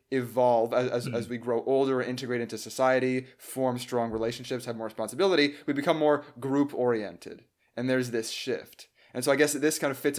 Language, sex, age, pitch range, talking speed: English, male, 20-39, 120-140 Hz, 190 wpm